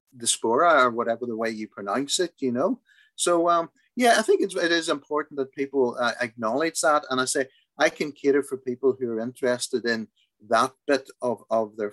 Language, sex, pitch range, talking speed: English, male, 115-155 Hz, 210 wpm